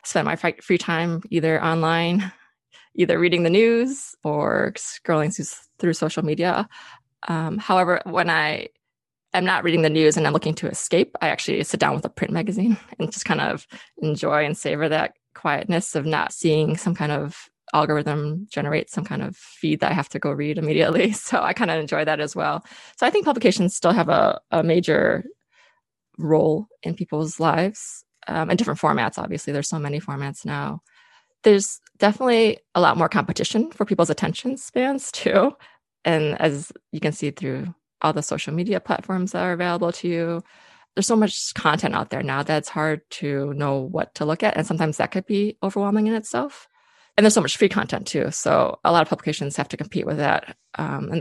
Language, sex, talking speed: English, female, 195 wpm